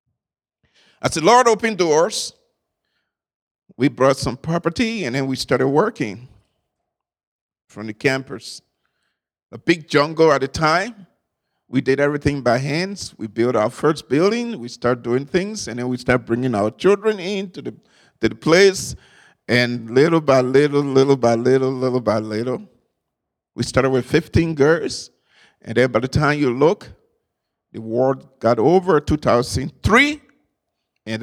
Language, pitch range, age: English, 120-155 Hz, 50-69